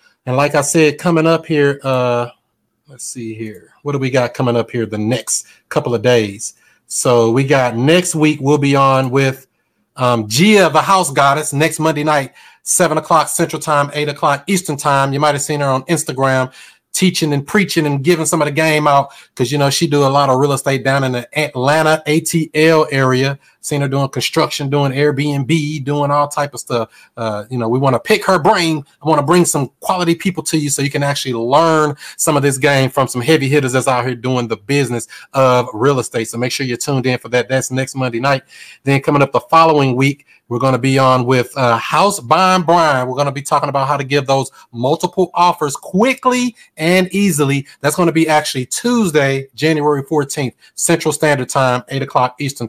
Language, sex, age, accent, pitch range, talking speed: English, male, 30-49, American, 130-155 Hz, 215 wpm